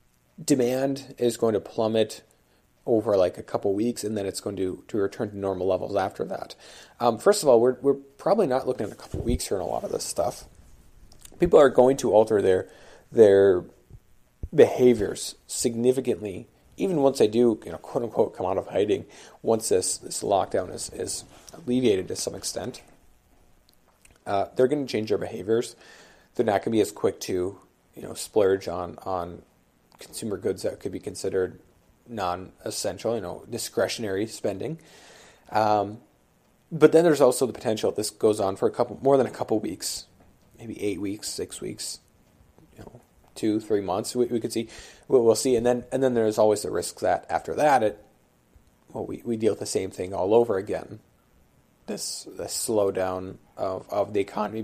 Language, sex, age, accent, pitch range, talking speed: English, male, 40-59, American, 95-125 Hz, 190 wpm